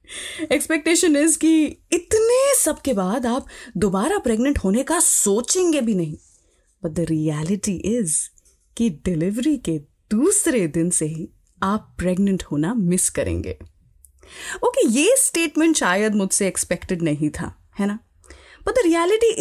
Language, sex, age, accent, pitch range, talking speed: Hindi, female, 20-39, native, 185-310 Hz, 140 wpm